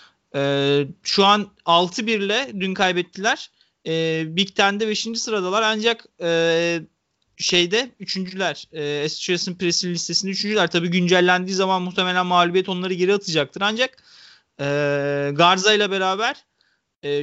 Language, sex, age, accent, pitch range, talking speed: Turkish, male, 40-59, native, 180-220 Hz, 120 wpm